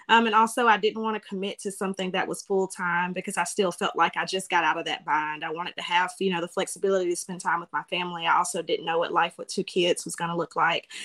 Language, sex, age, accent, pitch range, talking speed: English, female, 20-39, American, 175-205 Hz, 295 wpm